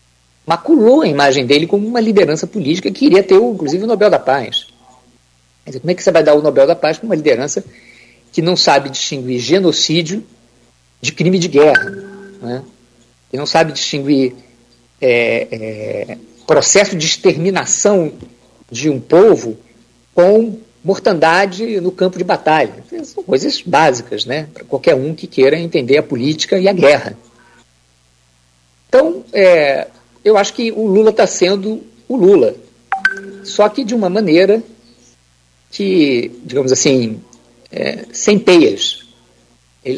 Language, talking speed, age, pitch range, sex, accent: Portuguese, 135 wpm, 50-69, 125-200 Hz, male, Brazilian